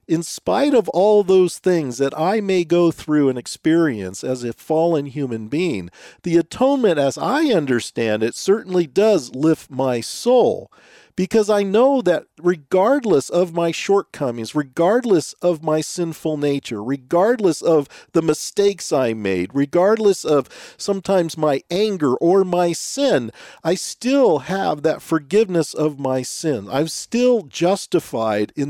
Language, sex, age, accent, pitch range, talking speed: English, male, 50-69, American, 155-240 Hz, 140 wpm